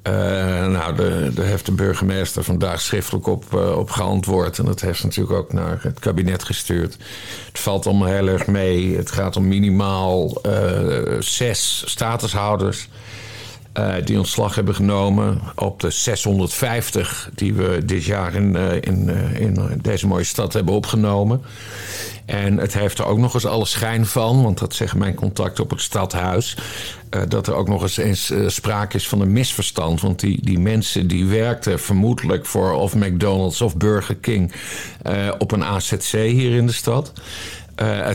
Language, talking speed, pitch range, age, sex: Dutch, 165 wpm, 95-125 Hz, 50-69, male